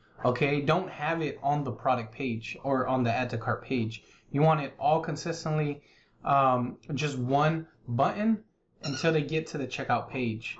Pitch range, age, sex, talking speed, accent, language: 125-160 Hz, 20-39, male, 175 wpm, American, English